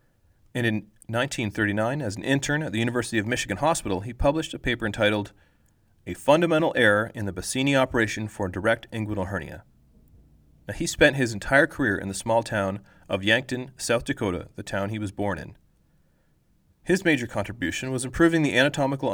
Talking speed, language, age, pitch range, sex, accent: 170 wpm, English, 30-49, 100-130 Hz, male, American